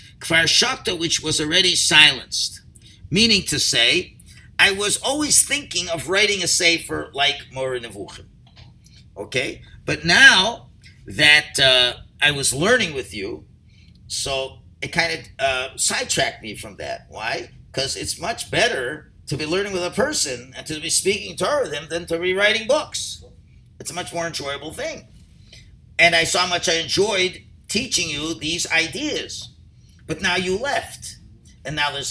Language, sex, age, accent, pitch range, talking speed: English, male, 50-69, American, 120-180 Hz, 160 wpm